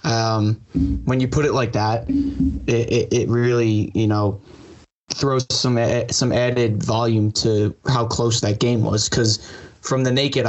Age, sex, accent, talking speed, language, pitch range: 20-39, male, American, 160 wpm, English, 110-130 Hz